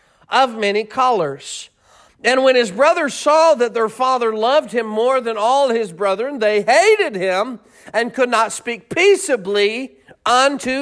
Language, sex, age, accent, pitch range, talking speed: English, male, 40-59, American, 230-295 Hz, 150 wpm